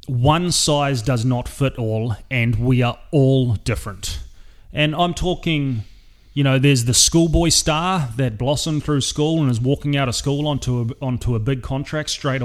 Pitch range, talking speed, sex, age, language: 120-150 Hz, 175 wpm, male, 30-49, English